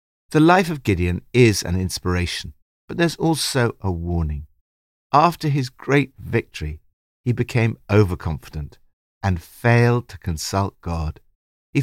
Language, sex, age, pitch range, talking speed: English, male, 60-79, 85-125 Hz, 125 wpm